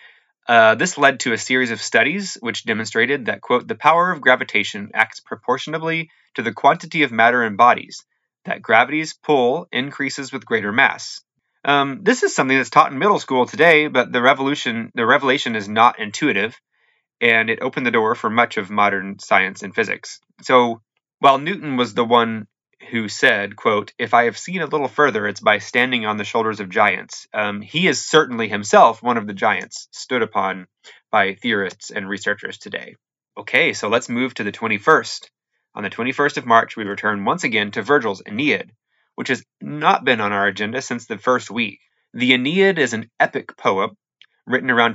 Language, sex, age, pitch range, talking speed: English, male, 30-49, 110-140 Hz, 185 wpm